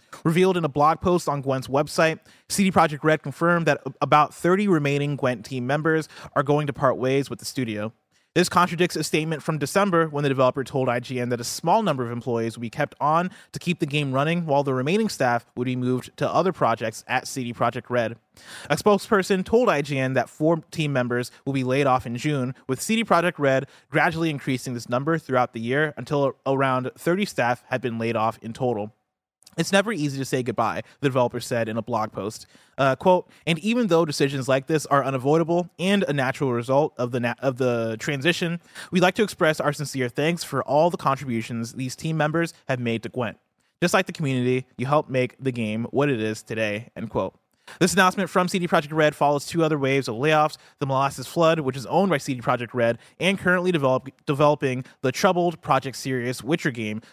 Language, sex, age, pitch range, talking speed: English, male, 30-49, 125-165 Hz, 210 wpm